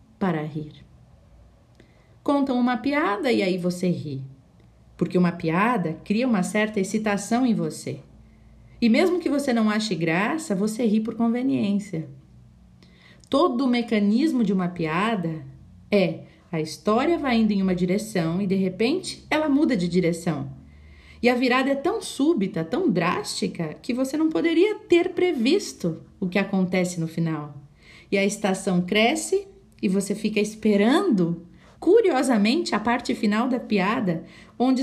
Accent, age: Brazilian, 40-59